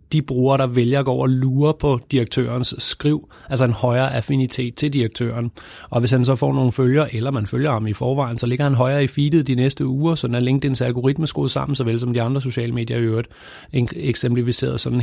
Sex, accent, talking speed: male, native, 220 wpm